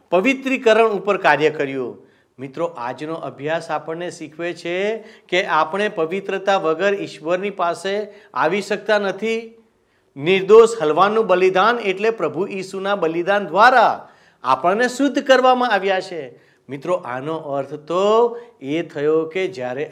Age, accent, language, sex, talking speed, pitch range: 50-69, native, Gujarati, male, 120 wpm, 150-215 Hz